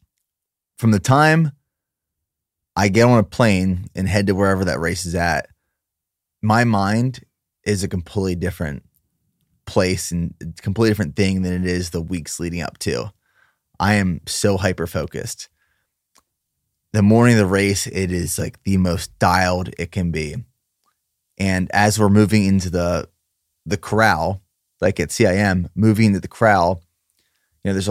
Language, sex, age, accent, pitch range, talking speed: English, male, 20-39, American, 90-110 Hz, 155 wpm